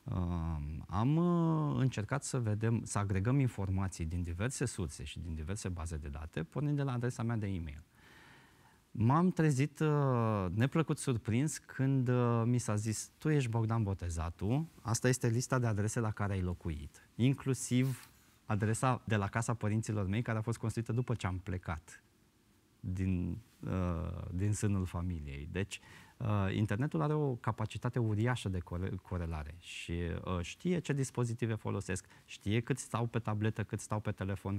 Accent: native